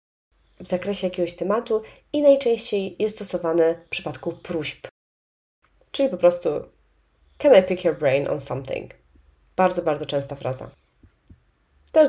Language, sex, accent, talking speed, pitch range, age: Polish, female, native, 130 wpm, 160-210 Hz, 20-39